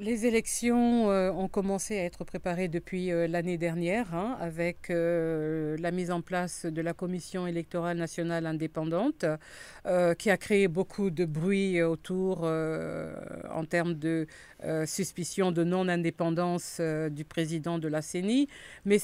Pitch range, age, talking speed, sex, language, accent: 165-190 Hz, 50-69, 140 wpm, female, French, French